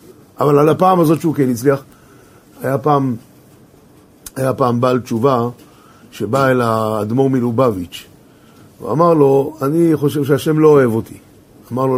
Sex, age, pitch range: male, 50-69, 120-155 Hz